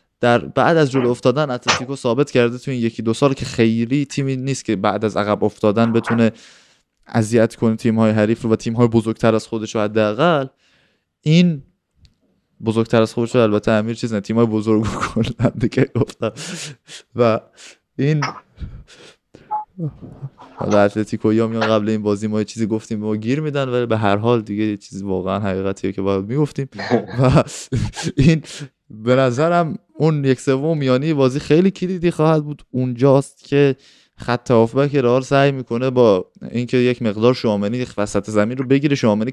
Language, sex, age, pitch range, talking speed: Persian, male, 20-39, 110-135 Hz, 155 wpm